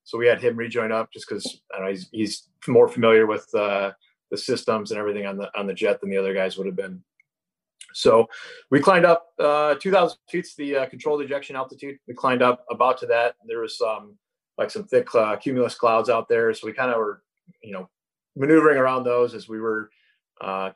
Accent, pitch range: American, 105-155 Hz